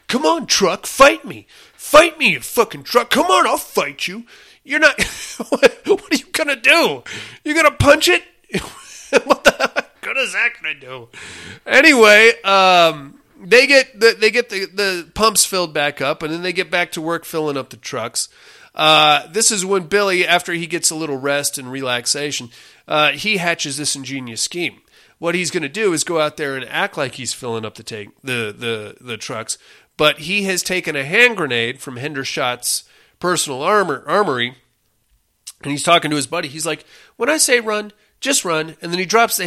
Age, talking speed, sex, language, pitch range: 30-49, 200 wpm, male, English, 140-200 Hz